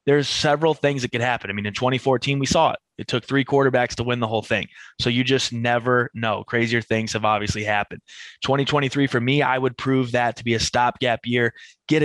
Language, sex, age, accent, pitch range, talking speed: English, male, 20-39, American, 110-135 Hz, 225 wpm